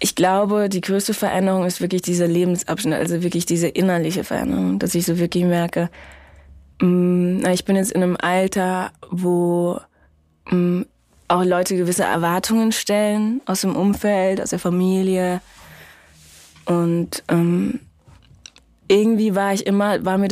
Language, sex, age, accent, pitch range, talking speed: German, female, 20-39, German, 165-185 Hz, 130 wpm